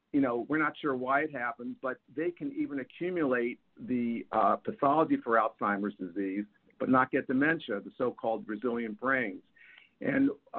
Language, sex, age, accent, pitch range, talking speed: English, male, 50-69, American, 115-145 Hz, 160 wpm